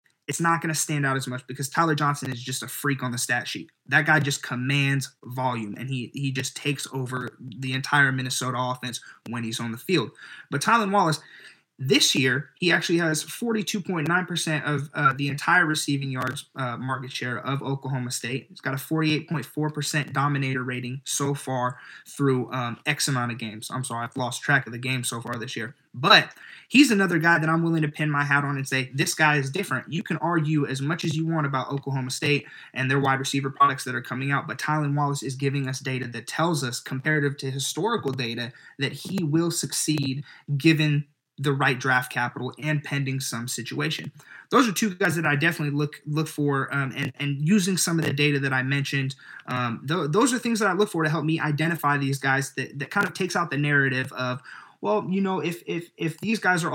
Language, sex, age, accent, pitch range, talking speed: English, male, 20-39, American, 130-155 Hz, 215 wpm